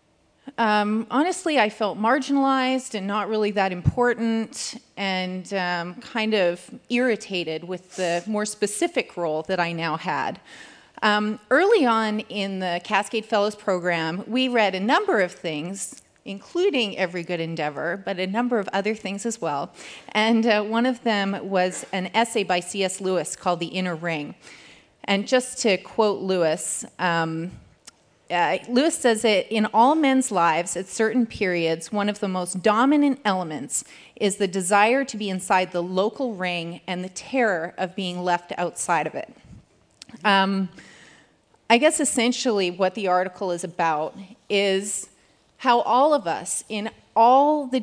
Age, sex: 30-49, female